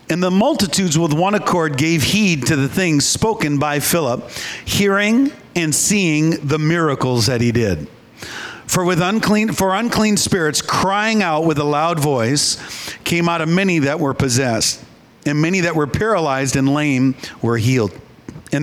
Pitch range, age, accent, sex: 135-170 Hz, 50-69, American, male